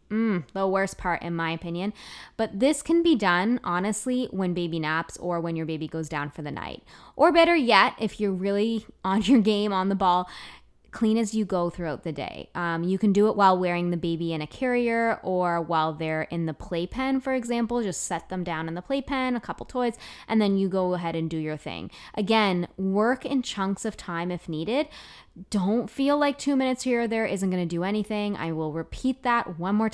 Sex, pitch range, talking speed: female, 175-245 Hz, 220 wpm